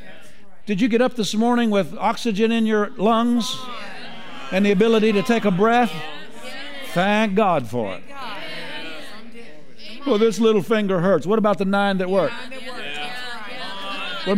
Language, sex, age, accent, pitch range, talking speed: English, male, 50-69, American, 175-230 Hz, 140 wpm